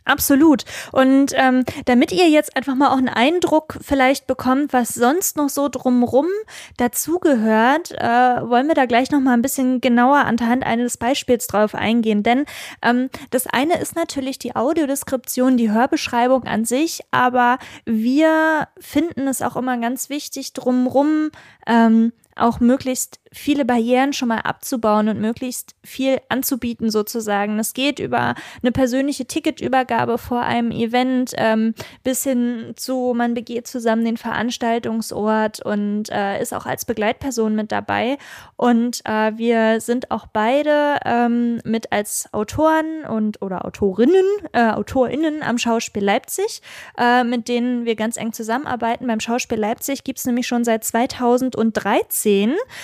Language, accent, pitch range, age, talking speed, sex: German, German, 230-275 Hz, 20-39, 145 wpm, female